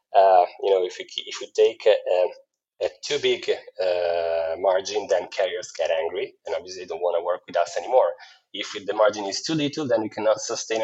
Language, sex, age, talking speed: English, male, 20-39, 215 wpm